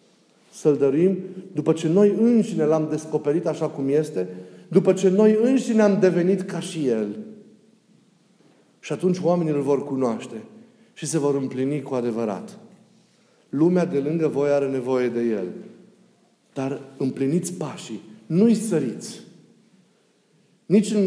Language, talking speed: Romanian, 130 wpm